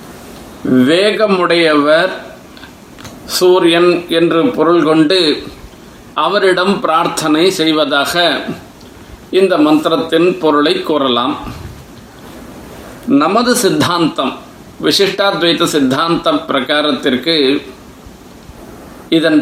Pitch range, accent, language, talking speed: 155-200 Hz, native, Tamil, 55 wpm